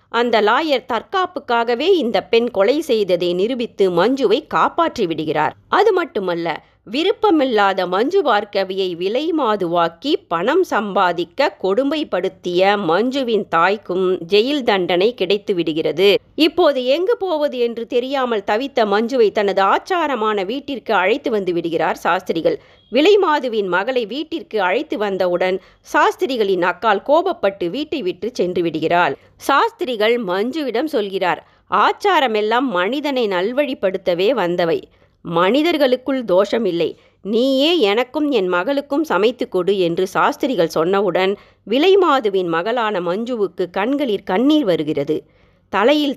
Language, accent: Tamil, native